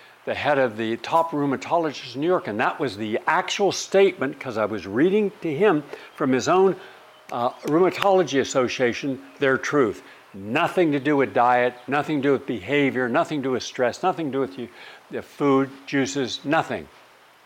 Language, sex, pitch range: English, male, 125-165 Hz